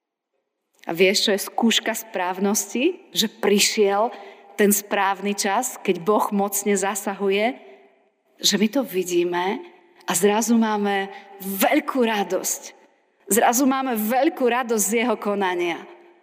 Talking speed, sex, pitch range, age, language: 115 wpm, female, 185-230 Hz, 30-49, Slovak